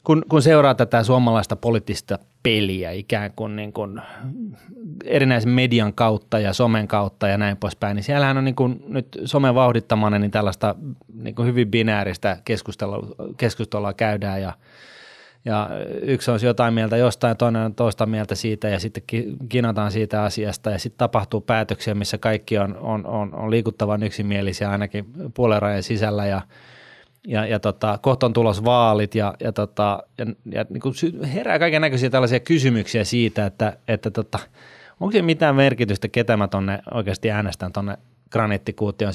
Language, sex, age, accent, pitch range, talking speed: Finnish, male, 20-39, native, 105-120 Hz, 150 wpm